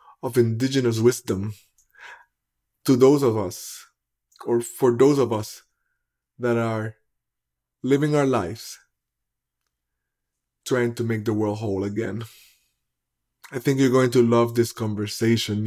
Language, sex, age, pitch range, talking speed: English, male, 30-49, 110-145 Hz, 125 wpm